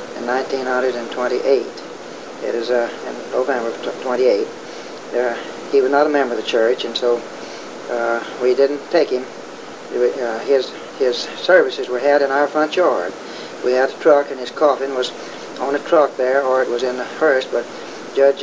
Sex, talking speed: male, 180 wpm